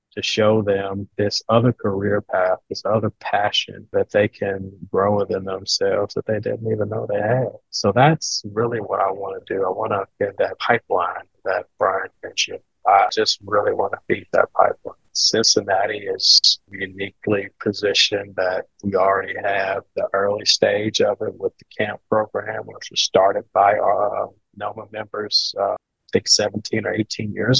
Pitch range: 100-135 Hz